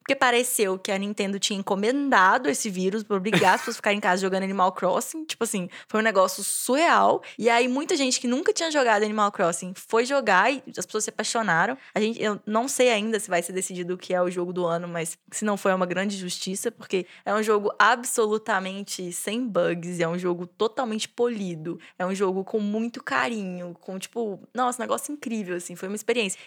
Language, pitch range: English, 190-255 Hz